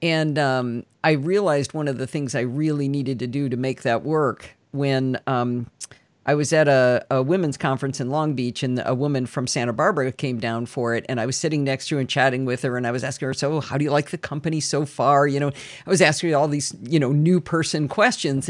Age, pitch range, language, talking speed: 50-69, 135-190 Hz, English, 245 wpm